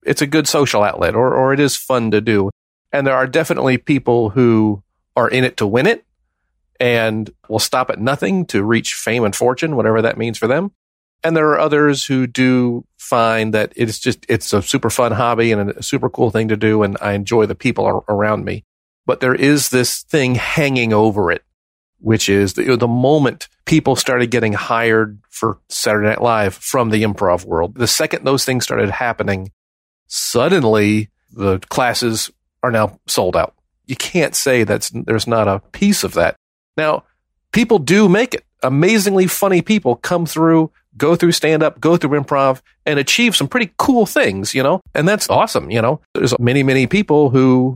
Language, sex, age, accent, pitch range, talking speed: English, male, 40-59, American, 110-145 Hz, 190 wpm